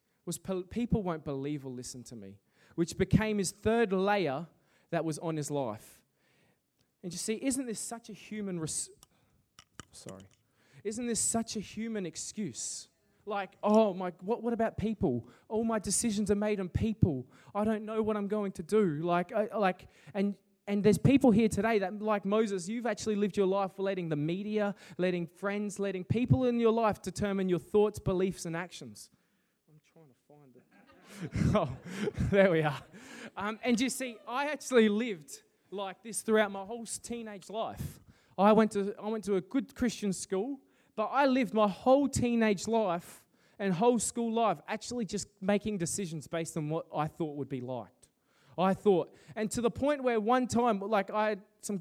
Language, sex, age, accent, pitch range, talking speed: English, male, 20-39, Australian, 180-220 Hz, 175 wpm